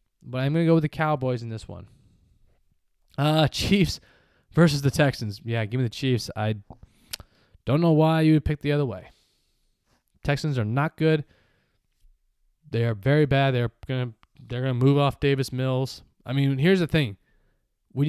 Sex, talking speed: male, 190 wpm